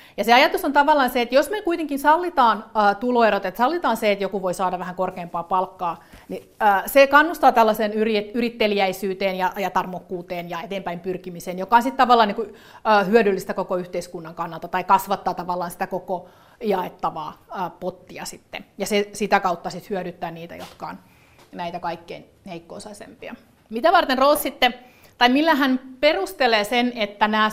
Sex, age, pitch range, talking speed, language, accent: female, 30-49, 190-230 Hz, 155 wpm, Finnish, native